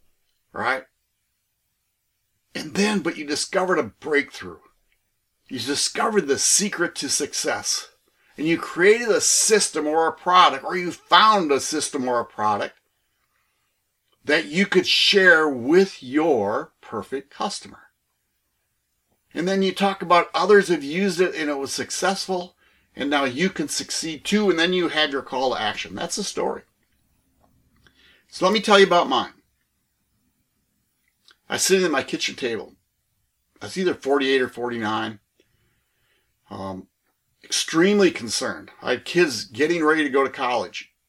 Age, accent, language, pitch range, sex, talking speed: 60-79, American, English, 135-190 Hz, male, 145 wpm